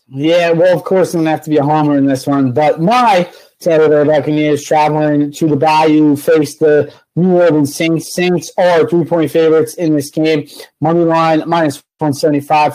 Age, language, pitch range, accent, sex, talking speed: 30-49, English, 135-160 Hz, American, male, 195 wpm